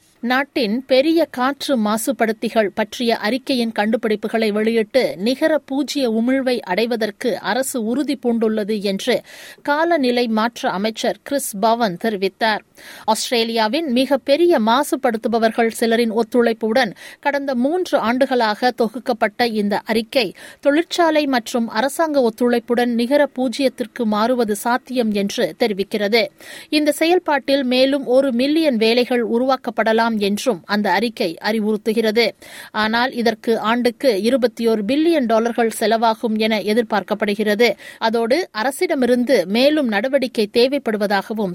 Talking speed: 95 wpm